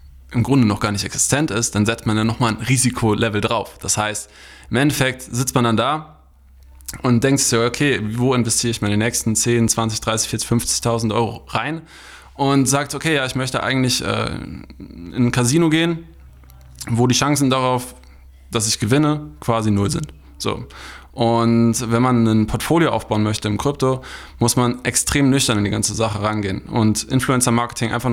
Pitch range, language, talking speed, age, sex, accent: 105-125 Hz, German, 175 wpm, 20-39, male, German